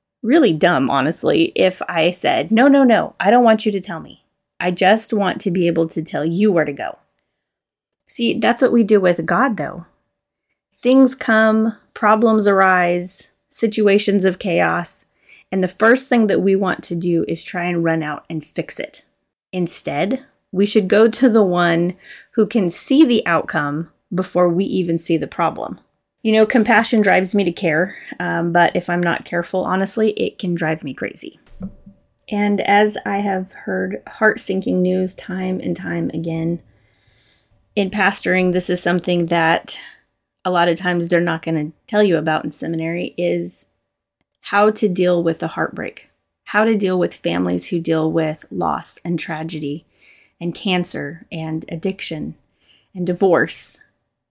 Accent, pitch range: American, 165-210 Hz